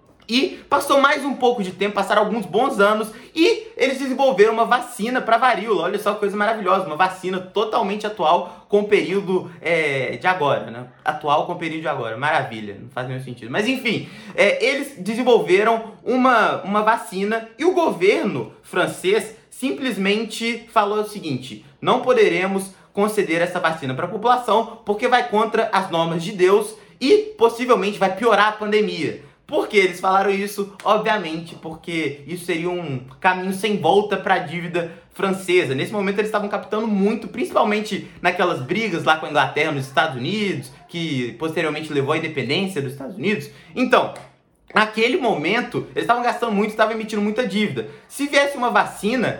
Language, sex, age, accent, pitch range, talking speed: Portuguese, male, 20-39, Brazilian, 170-225 Hz, 165 wpm